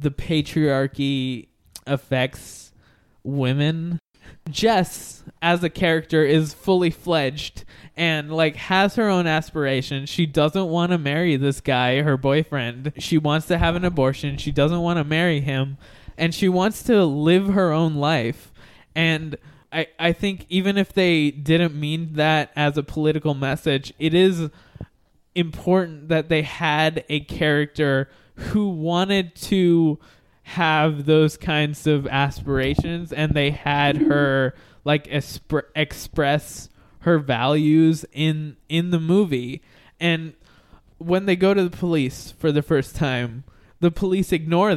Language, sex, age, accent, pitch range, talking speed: English, male, 20-39, American, 140-165 Hz, 140 wpm